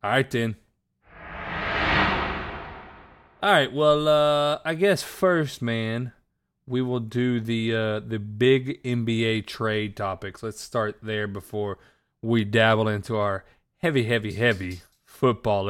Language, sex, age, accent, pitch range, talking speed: English, male, 30-49, American, 100-125 Hz, 120 wpm